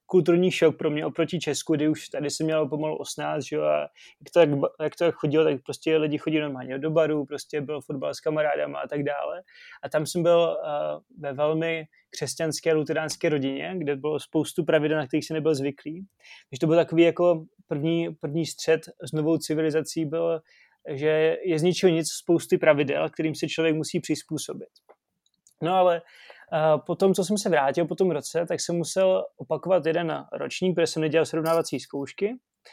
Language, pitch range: Czech, 155-170 Hz